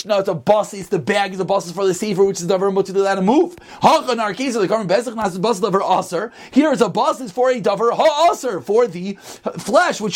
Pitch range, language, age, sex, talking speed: 215-275 Hz, English, 30-49, male, 190 wpm